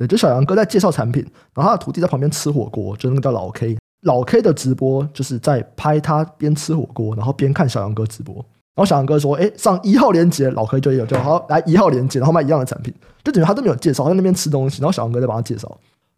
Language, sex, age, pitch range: Chinese, male, 20-39, 120-170 Hz